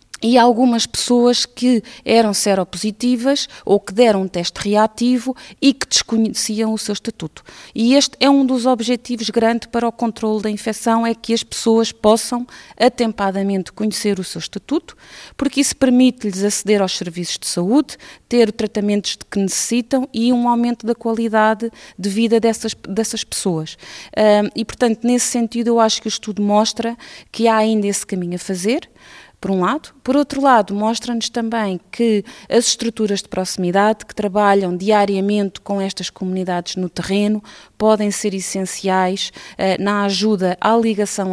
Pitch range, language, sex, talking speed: 195-235 Hz, Portuguese, female, 155 wpm